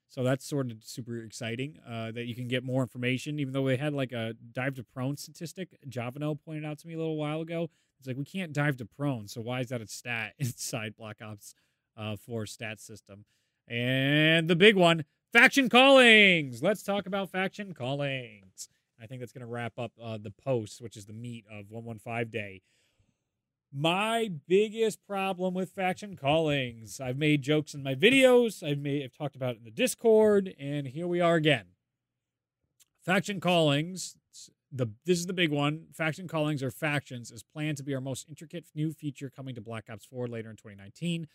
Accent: American